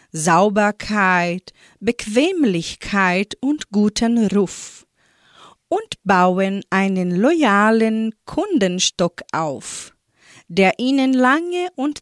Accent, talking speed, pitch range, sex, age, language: German, 75 wpm, 180-250 Hz, female, 40-59, German